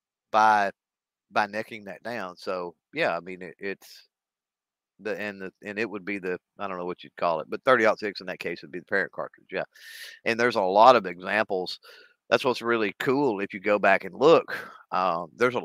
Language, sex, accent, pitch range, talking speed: English, male, American, 100-140 Hz, 225 wpm